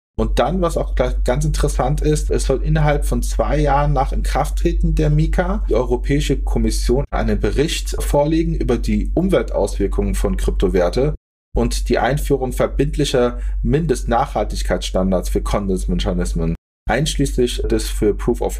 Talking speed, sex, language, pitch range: 130 wpm, male, German, 110-145 Hz